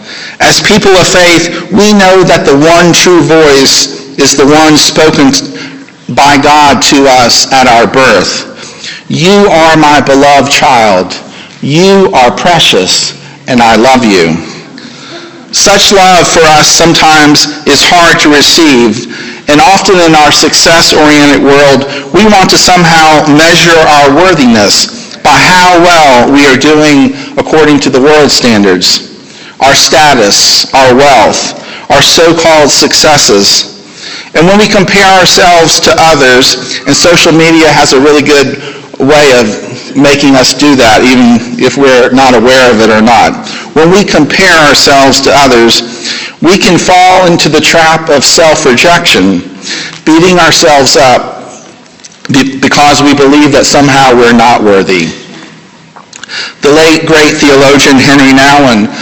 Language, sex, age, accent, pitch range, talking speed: English, male, 50-69, American, 140-165 Hz, 135 wpm